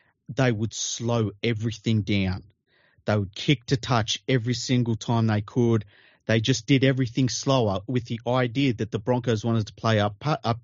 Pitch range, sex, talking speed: 110-135 Hz, male, 175 wpm